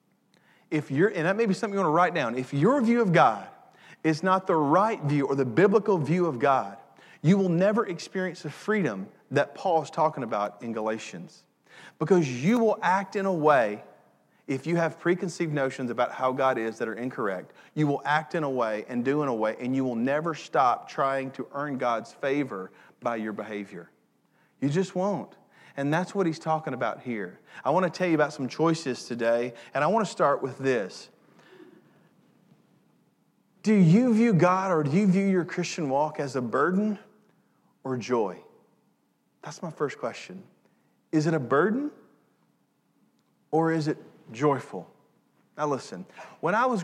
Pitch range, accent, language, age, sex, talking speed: 130-185 Hz, American, English, 40-59, male, 185 wpm